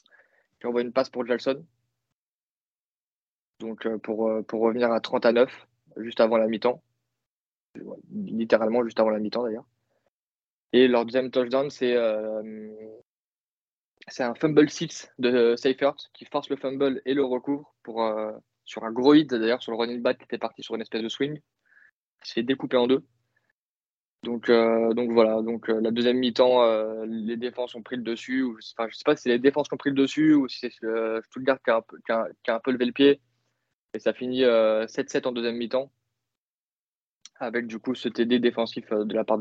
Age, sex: 20-39, male